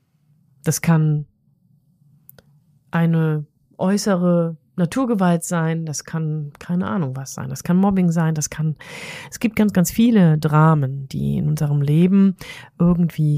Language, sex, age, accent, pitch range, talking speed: German, female, 30-49, German, 150-185 Hz, 130 wpm